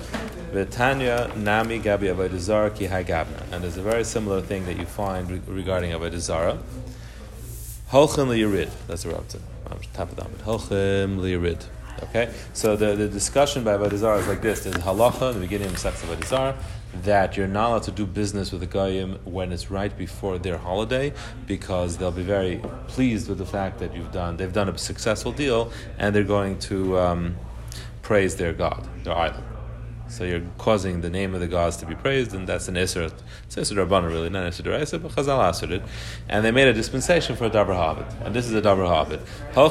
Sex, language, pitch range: male, English, 95-115 Hz